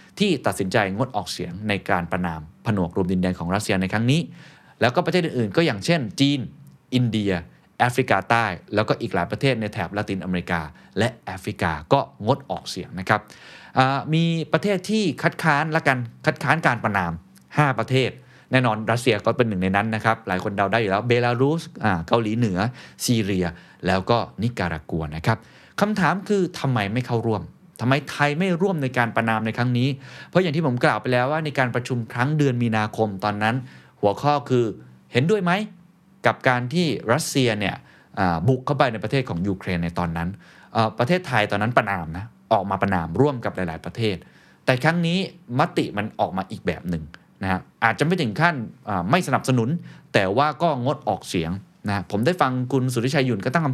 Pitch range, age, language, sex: 100-145 Hz, 20-39, Thai, male